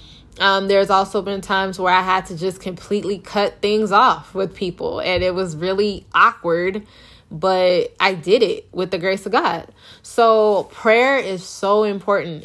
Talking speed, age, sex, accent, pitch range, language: 170 wpm, 10-29, female, American, 180-210 Hz, English